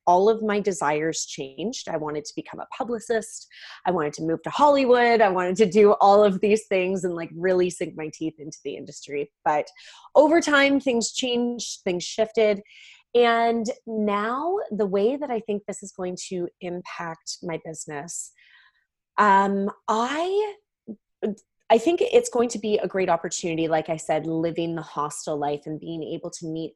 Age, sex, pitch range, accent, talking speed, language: 20-39, female, 165-225 Hz, American, 175 wpm, English